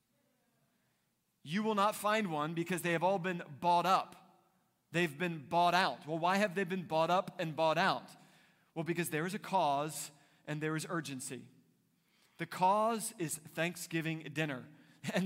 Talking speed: 165 wpm